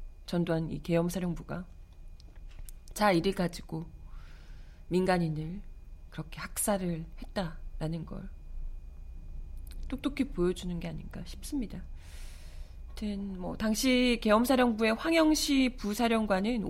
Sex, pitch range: female, 145-210 Hz